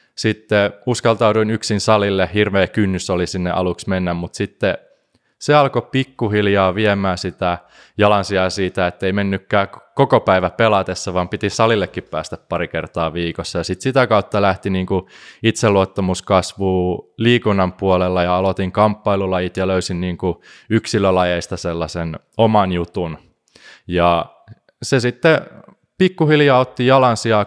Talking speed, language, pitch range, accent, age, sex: 125 wpm, Finnish, 90-110 Hz, native, 20-39, male